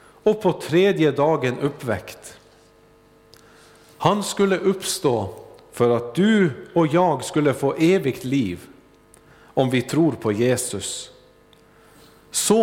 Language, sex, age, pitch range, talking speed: Swedish, male, 50-69, 125-180 Hz, 110 wpm